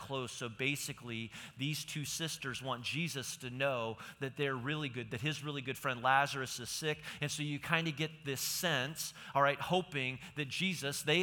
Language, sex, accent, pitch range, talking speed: English, male, American, 125-155 Hz, 195 wpm